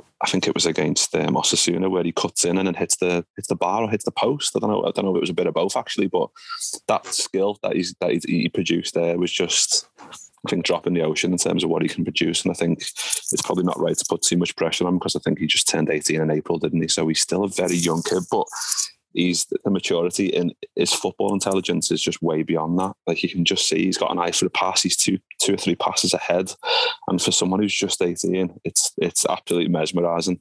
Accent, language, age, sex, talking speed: British, English, 20-39, male, 270 wpm